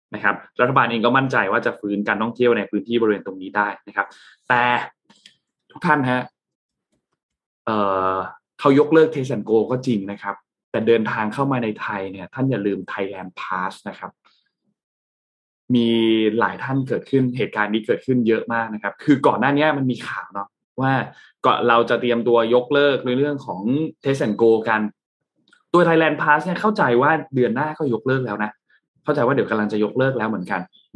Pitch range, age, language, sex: 110-145 Hz, 20-39, Thai, male